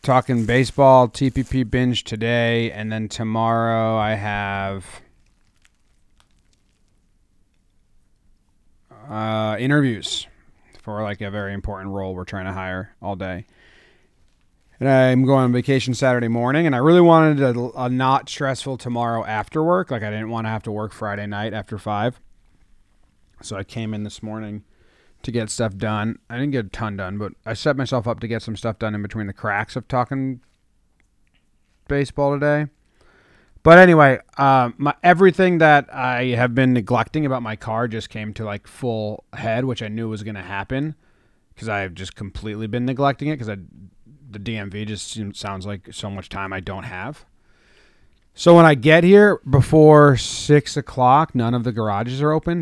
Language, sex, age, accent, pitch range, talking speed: English, male, 30-49, American, 100-130 Hz, 170 wpm